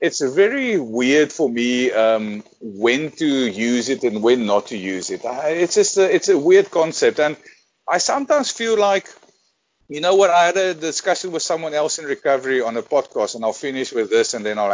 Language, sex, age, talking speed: English, male, 50-69, 210 wpm